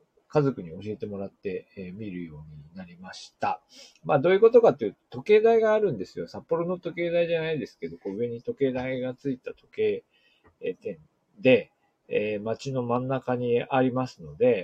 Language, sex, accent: Japanese, male, native